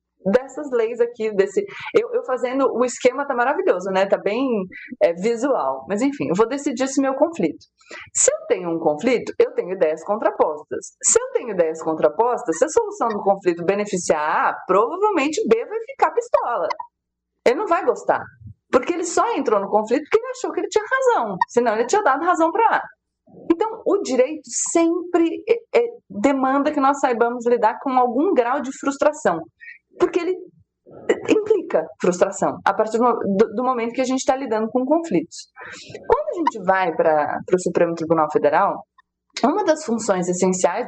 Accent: Brazilian